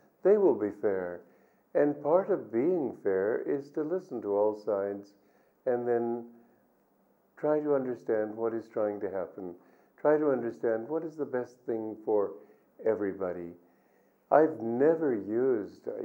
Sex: male